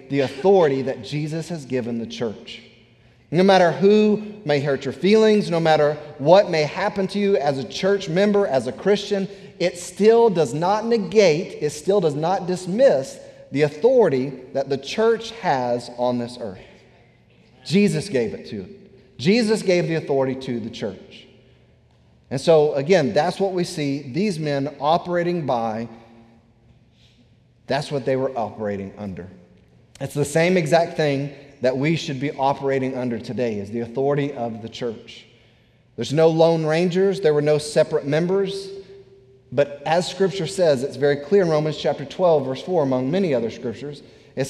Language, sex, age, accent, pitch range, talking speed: English, male, 40-59, American, 130-185 Hz, 165 wpm